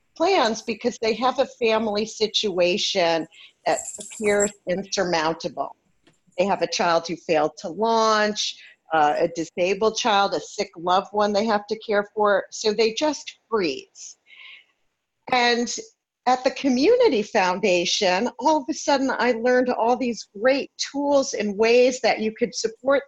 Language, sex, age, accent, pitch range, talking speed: English, female, 50-69, American, 200-255 Hz, 145 wpm